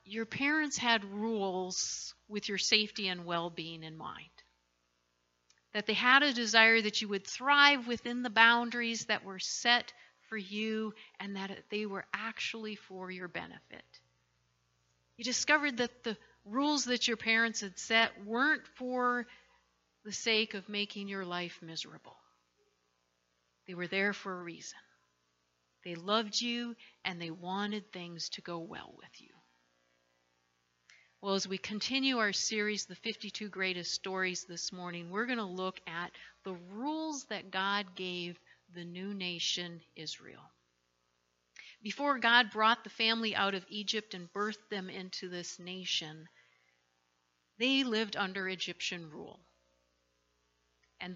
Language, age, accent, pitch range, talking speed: English, 50-69, American, 165-225 Hz, 140 wpm